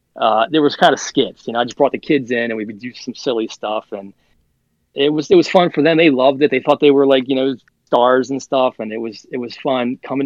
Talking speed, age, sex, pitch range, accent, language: 285 wpm, 20-39, male, 110-145 Hz, American, English